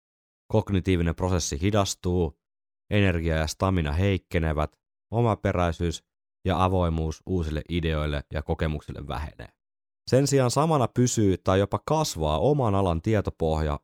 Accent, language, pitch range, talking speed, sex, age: native, Finnish, 80-100 Hz, 110 wpm, male, 30-49